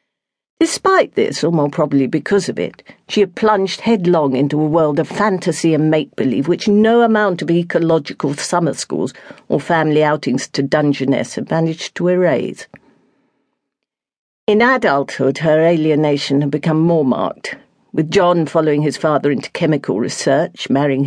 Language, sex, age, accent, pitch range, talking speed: English, female, 50-69, British, 150-205 Hz, 150 wpm